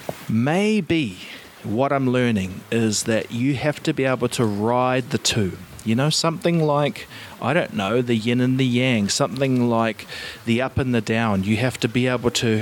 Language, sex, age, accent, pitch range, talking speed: English, male, 30-49, Australian, 110-140 Hz, 190 wpm